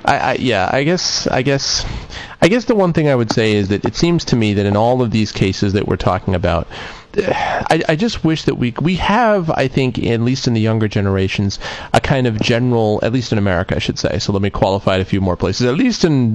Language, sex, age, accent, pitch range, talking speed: English, male, 30-49, American, 100-125 Hz, 255 wpm